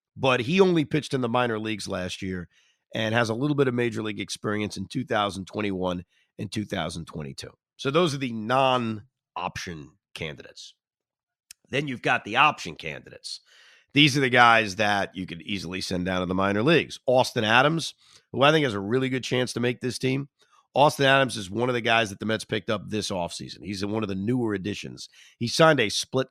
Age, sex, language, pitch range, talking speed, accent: 40-59, male, English, 105-130 Hz, 200 wpm, American